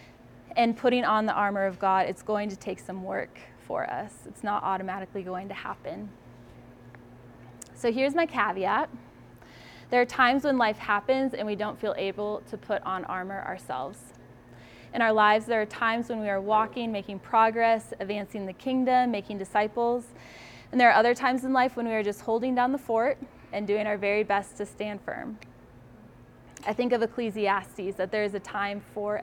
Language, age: English, 10-29